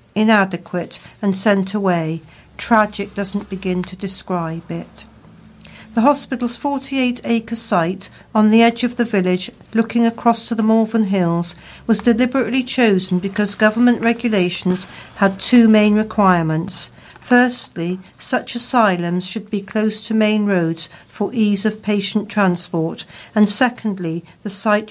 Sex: female